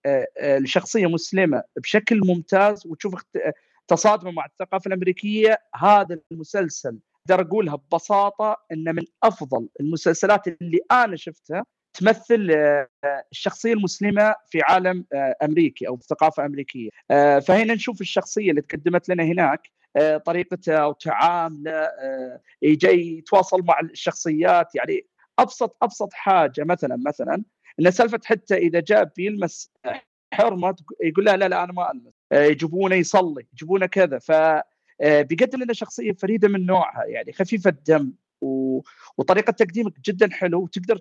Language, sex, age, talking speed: Arabic, male, 40-59, 120 wpm